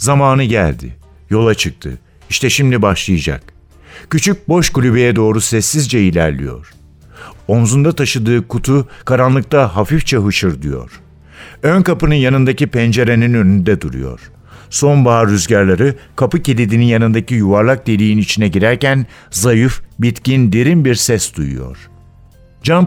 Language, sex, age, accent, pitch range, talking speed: Turkish, male, 60-79, native, 95-130 Hz, 110 wpm